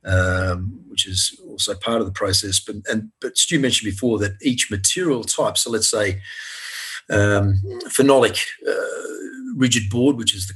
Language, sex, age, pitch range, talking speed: English, male, 40-59, 100-120 Hz, 165 wpm